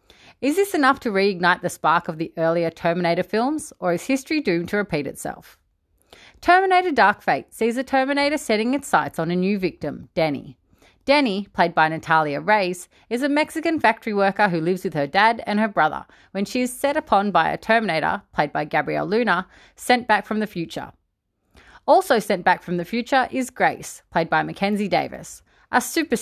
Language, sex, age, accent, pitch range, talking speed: English, female, 30-49, Australian, 170-260 Hz, 190 wpm